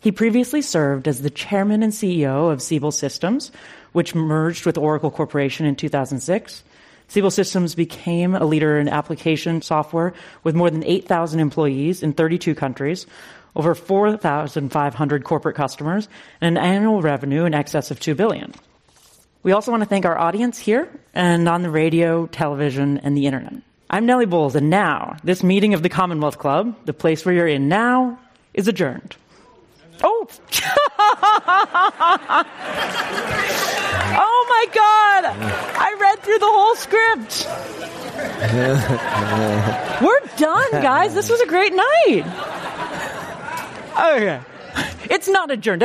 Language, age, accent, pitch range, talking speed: English, 30-49, American, 155-250 Hz, 135 wpm